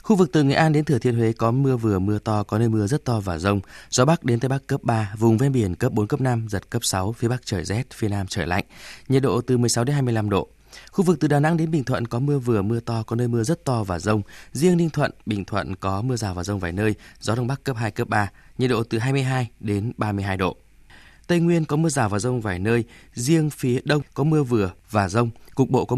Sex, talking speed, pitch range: male, 275 wpm, 105-135 Hz